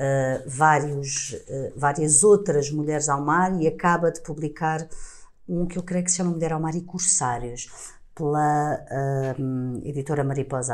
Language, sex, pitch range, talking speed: Portuguese, female, 125-160 Hz, 135 wpm